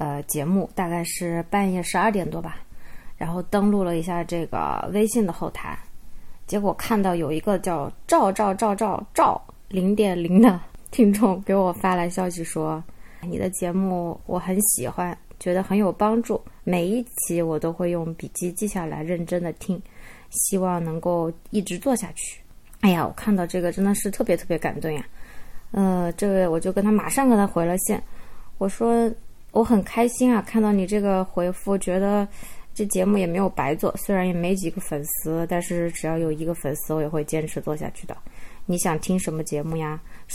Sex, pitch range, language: female, 170-205 Hz, Chinese